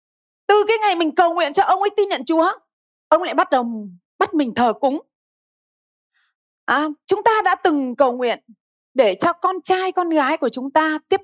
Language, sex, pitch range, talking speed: Vietnamese, female, 265-375 Hz, 200 wpm